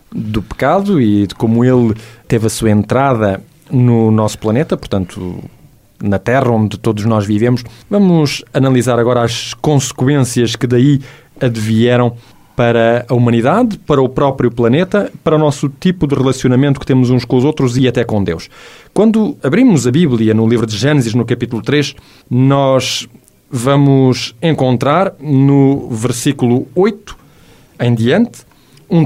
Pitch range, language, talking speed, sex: 115-150 Hz, Portuguese, 145 wpm, male